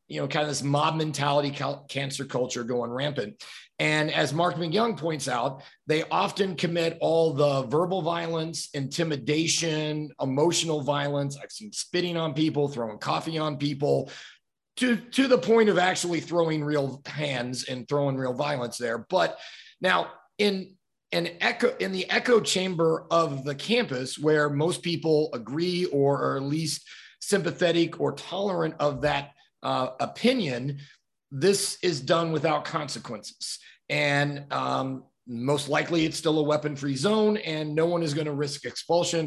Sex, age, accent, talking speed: male, 30-49, American, 150 wpm